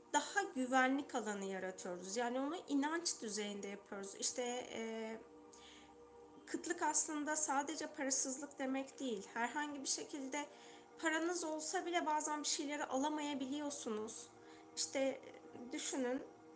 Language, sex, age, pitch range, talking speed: Turkish, female, 30-49, 225-300 Hz, 105 wpm